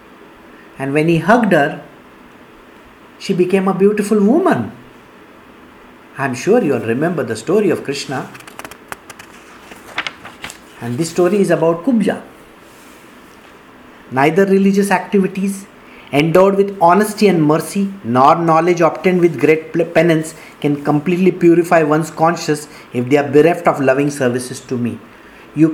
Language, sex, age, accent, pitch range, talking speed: English, male, 50-69, Indian, 160-205 Hz, 125 wpm